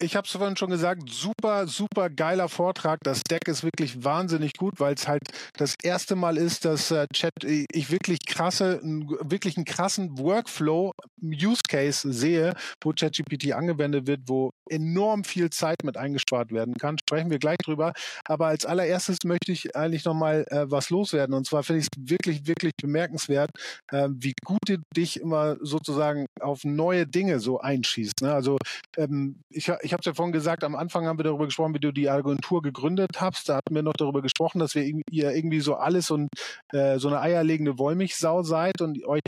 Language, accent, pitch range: German, German, 145-170 Hz